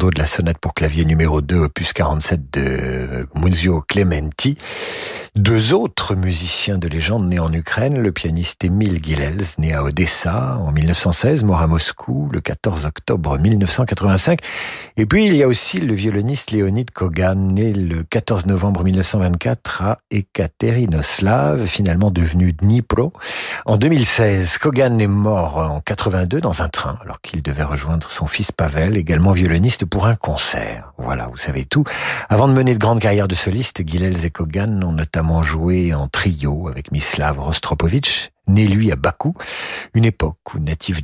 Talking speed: 160 wpm